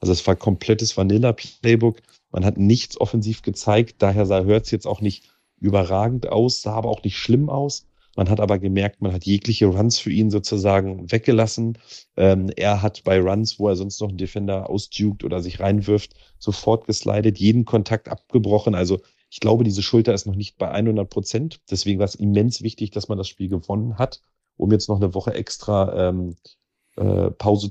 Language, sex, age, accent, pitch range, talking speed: German, male, 40-59, German, 100-110 Hz, 185 wpm